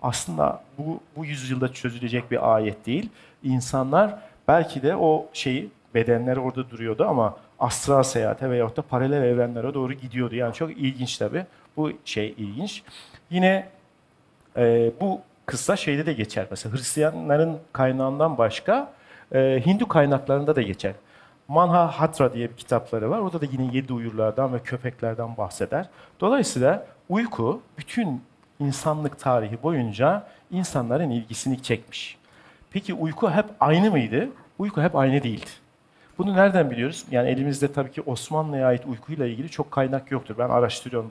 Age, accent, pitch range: 50-69, native, 120-160 Hz